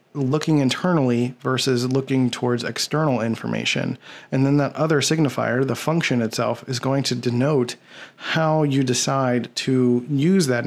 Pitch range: 120-145 Hz